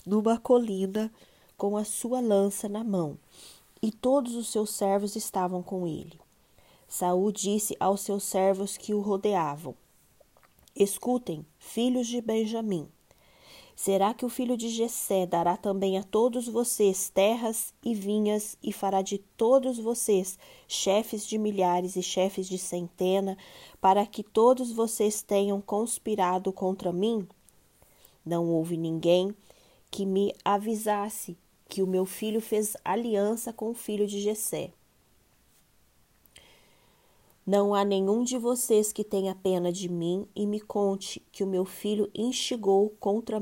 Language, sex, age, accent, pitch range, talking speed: Portuguese, female, 20-39, Brazilian, 190-220 Hz, 135 wpm